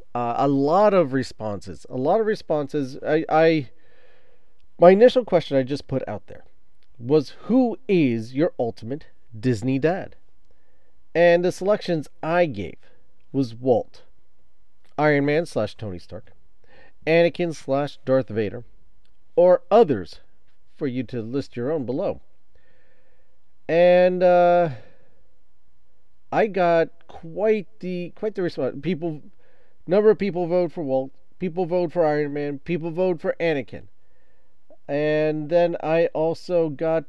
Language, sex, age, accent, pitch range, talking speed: English, male, 40-59, American, 135-180 Hz, 130 wpm